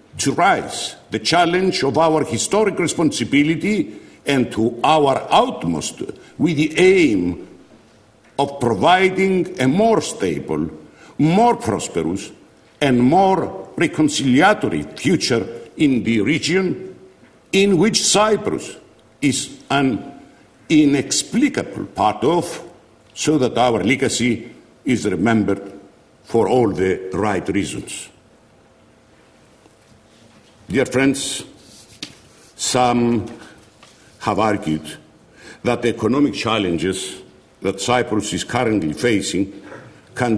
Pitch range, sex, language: 110-160 Hz, male, English